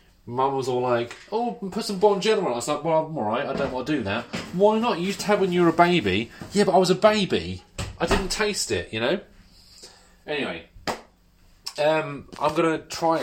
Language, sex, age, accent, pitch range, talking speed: English, male, 30-49, British, 105-155 Hz, 230 wpm